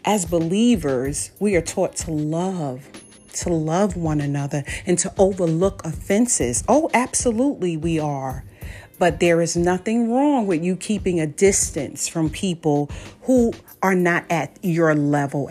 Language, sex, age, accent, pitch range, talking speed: English, female, 40-59, American, 150-195 Hz, 145 wpm